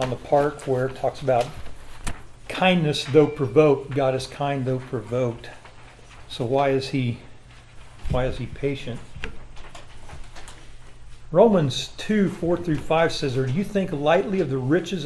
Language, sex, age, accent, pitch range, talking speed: English, male, 50-69, American, 120-145 Hz, 145 wpm